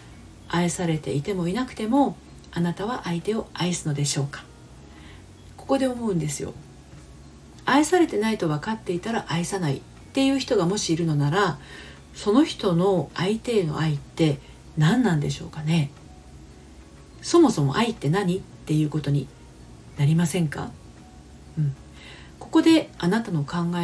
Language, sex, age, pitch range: Japanese, female, 40-59, 140-215 Hz